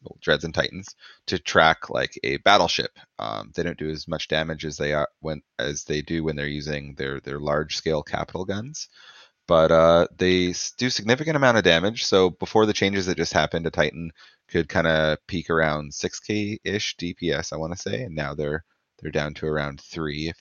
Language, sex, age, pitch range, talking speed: English, male, 30-49, 75-95 Hz, 200 wpm